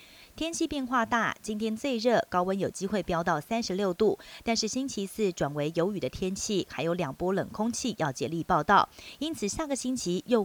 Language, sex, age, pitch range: Chinese, female, 30-49, 170-235 Hz